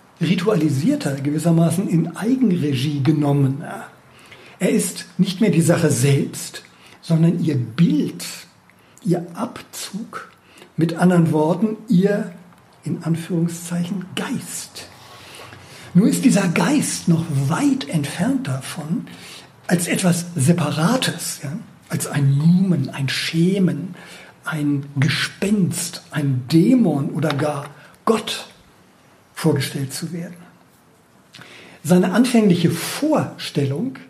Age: 60-79